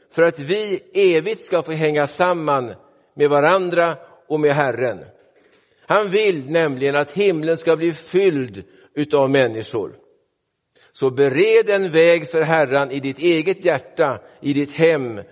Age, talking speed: 60-79, 140 wpm